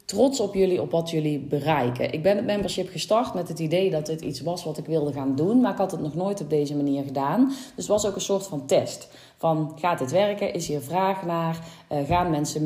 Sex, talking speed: female, 250 wpm